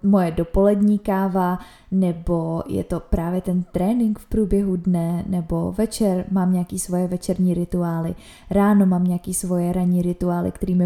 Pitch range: 180-195 Hz